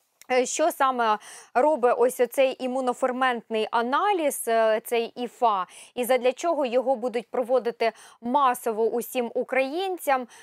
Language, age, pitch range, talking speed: Ukrainian, 20-39, 230-280 Hz, 105 wpm